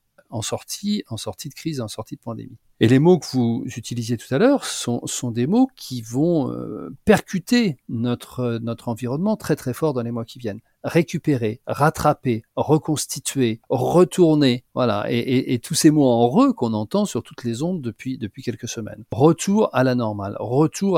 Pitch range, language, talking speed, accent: 115-155 Hz, French, 190 wpm, French